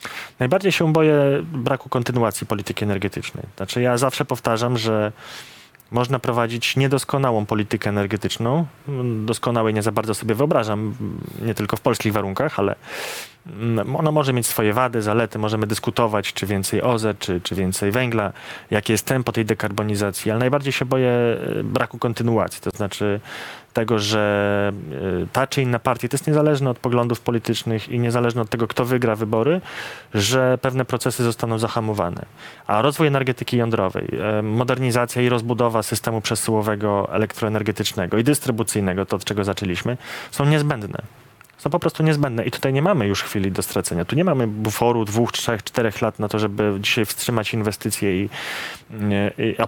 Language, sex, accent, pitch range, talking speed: Polish, male, native, 105-130 Hz, 150 wpm